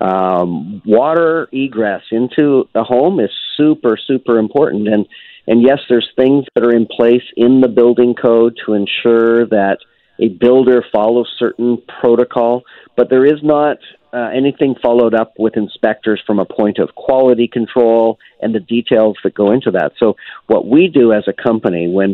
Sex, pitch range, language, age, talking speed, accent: male, 105-130 Hz, English, 50-69, 170 wpm, American